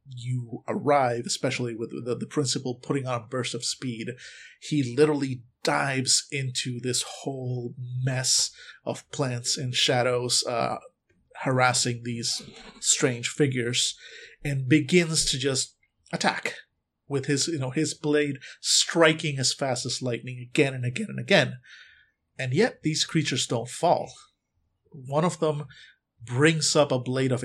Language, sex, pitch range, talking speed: English, male, 120-140 Hz, 140 wpm